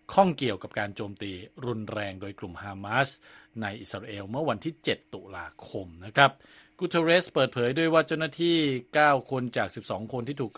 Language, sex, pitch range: Thai, male, 100-130 Hz